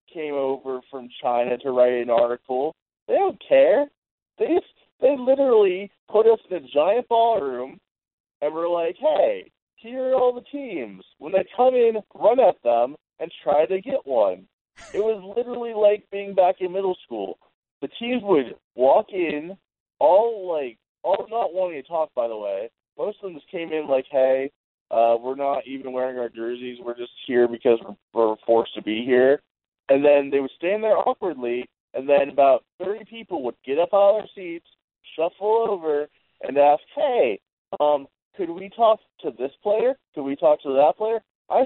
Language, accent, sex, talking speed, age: English, American, male, 185 wpm, 20-39